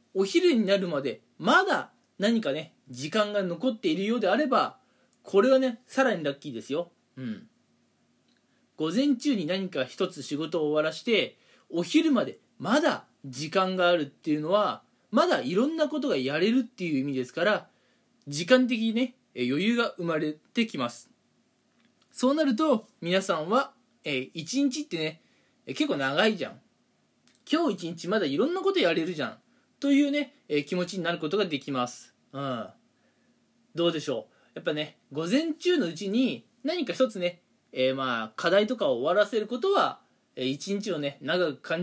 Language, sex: Japanese, male